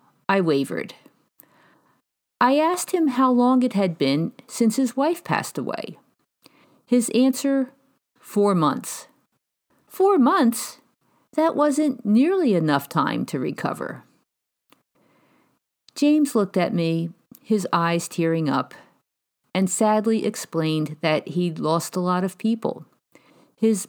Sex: female